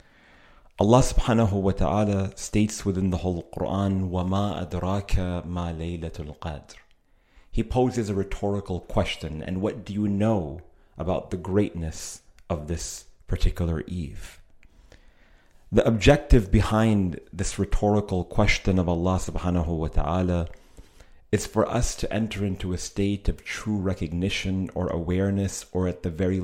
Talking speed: 135 wpm